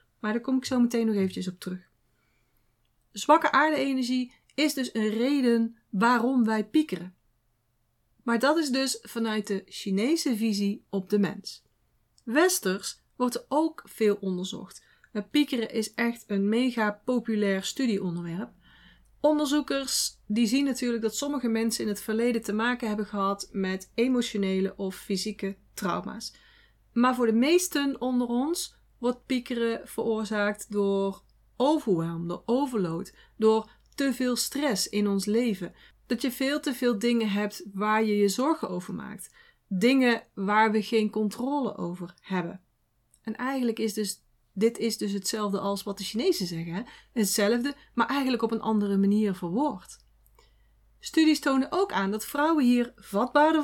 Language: Dutch